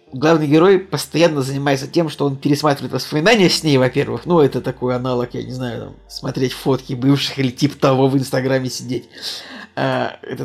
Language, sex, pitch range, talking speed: Russian, male, 130-155 Hz, 170 wpm